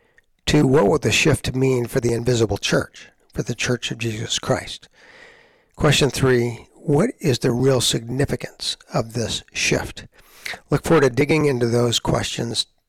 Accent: American